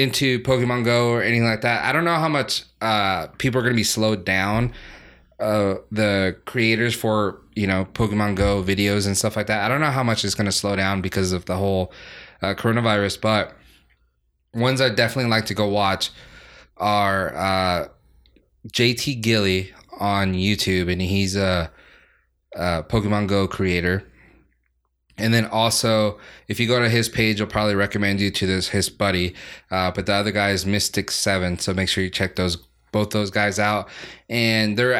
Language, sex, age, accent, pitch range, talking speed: English, male, 20-39, American, 95-115 Hz, 185 wpm